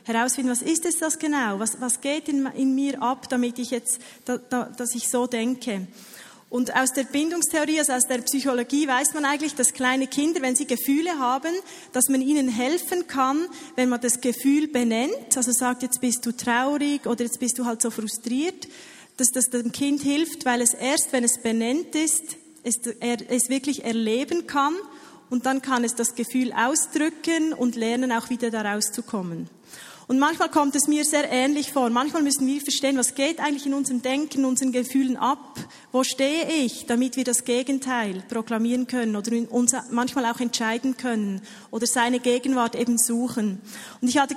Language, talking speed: German, 190 wpm